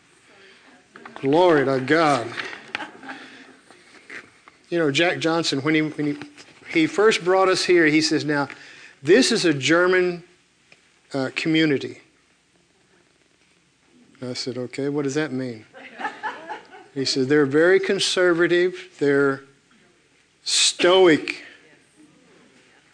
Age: 50-69